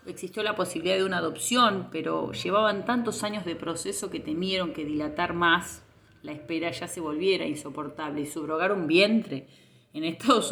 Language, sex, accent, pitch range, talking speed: Spanish, female, Argentinian, 150-195 Hz, 165 wpm